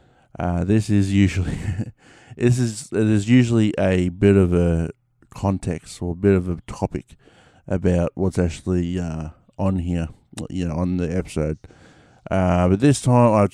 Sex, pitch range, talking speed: male, 90-105 Hz, 160 wpm